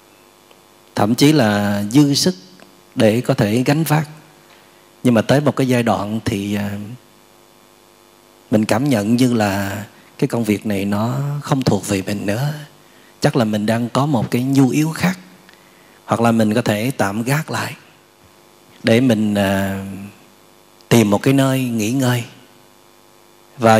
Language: Vietnamese